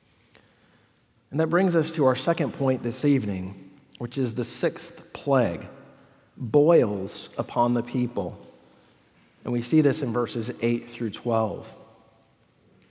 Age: 40-59